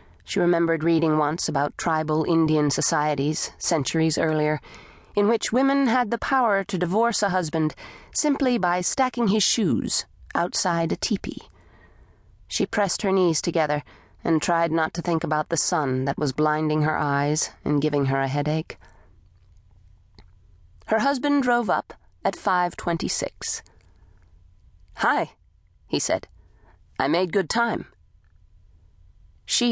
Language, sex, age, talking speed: English, female, 40-59, 130 wpm